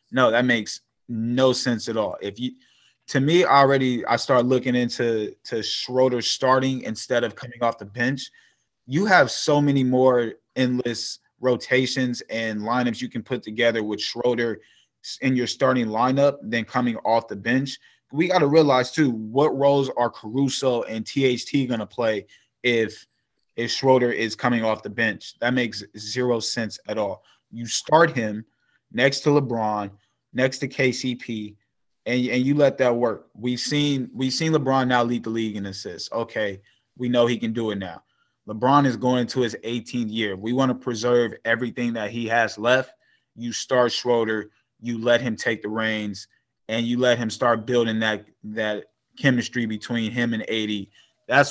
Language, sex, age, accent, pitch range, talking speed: English, male, 20-39, American, 110-130 Hz, 175 wpm